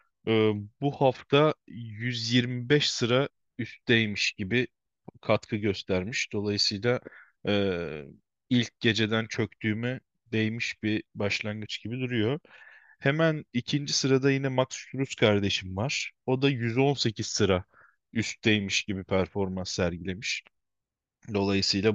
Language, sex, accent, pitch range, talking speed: Turkish, male, native, 105-135 Hz, 100 wpm